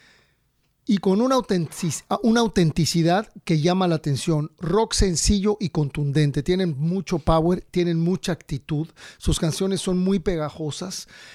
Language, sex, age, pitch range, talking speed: English, male, 40-59, 150-180 Hz, 125 wpm